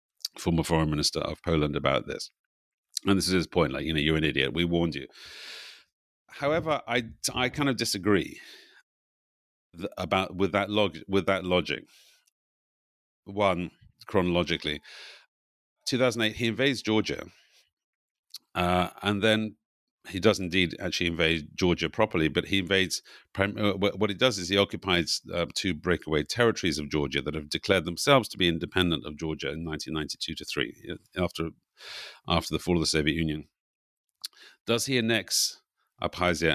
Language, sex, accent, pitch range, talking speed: English, male, British, 80-100 Hz, 155 wpm